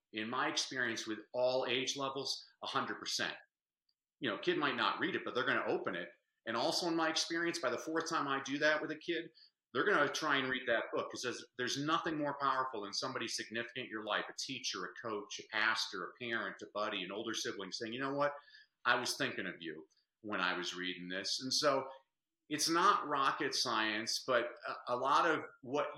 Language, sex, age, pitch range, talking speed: English, male, 40-59, 115-150 Hz, 215 wpm